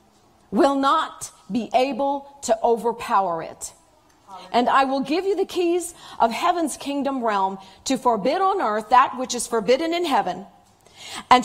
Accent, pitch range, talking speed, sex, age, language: American, 225-325 Hz, 150 wpm, female, 40-59, English